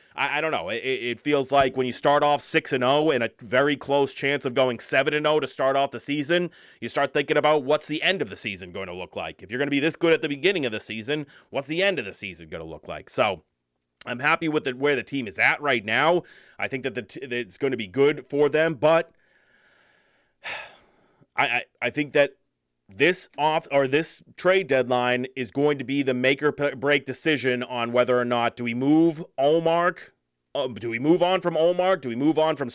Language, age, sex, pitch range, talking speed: English, 30-49, male, 130-160 Hz, 230 wpm